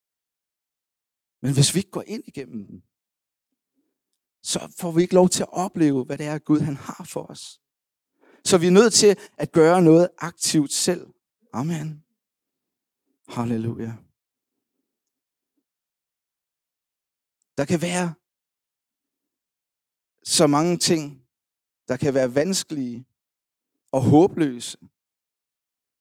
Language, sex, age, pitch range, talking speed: Danish, male, 60-79, 130-180 Hz, 110 wpm